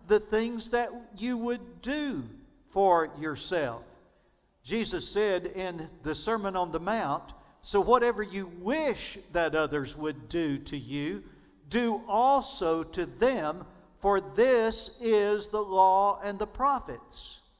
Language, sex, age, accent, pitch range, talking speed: English, male, 50-69, American, 145-205 Hz, 130 wpm